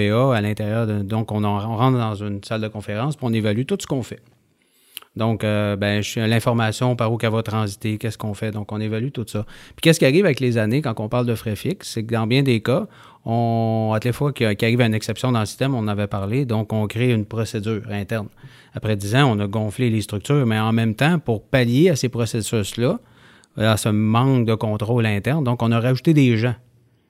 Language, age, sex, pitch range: English, 30-49, male, 110-125 Hz